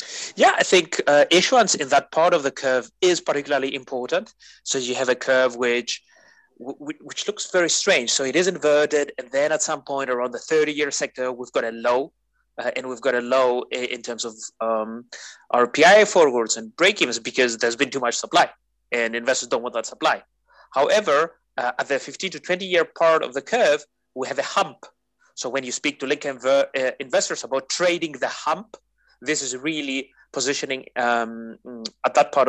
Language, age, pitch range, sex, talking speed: English, 30-49, 125-155 Hz, male, 190 wpm